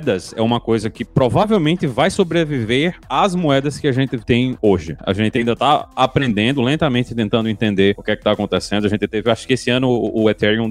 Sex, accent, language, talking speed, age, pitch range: male, Brazilian, Portuguese, 205 wpm, 20-39, 110-155 Hz